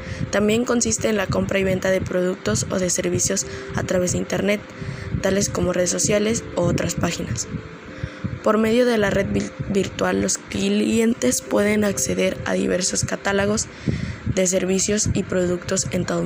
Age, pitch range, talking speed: 20-39, 130-200 Hz, 155 wpm